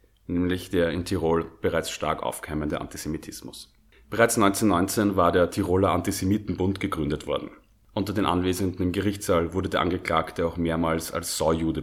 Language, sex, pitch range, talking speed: German, male, 85-100 Hz, 140 wpm